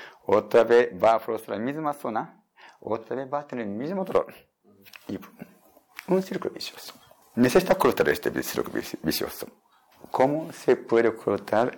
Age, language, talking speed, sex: 60-79, Spanish, 150 wpm, male